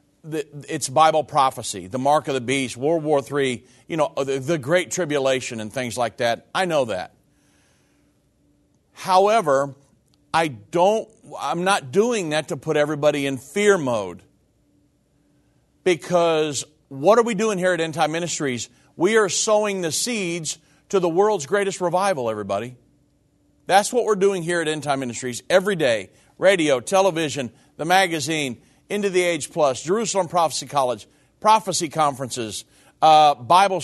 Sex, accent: male, American